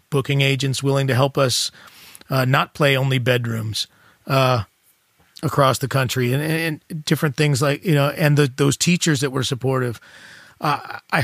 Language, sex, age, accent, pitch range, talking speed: English, male, 30-49, American, 130-150 Hz, 165 wpm